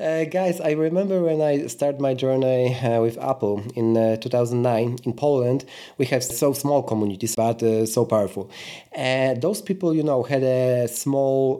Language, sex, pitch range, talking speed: Polish, male, 115-150 Hz, 175 wpm